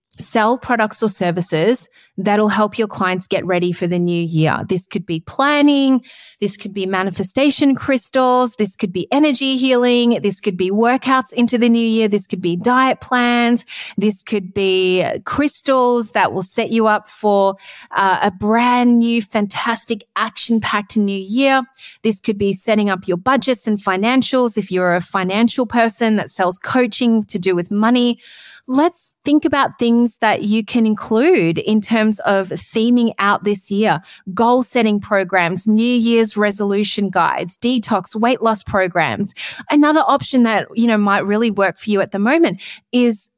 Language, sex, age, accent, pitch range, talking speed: English, female, 30-49, Australian, 195-240 Hz, 165 wpm